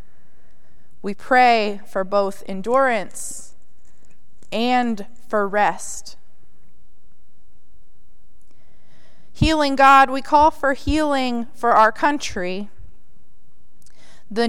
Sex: female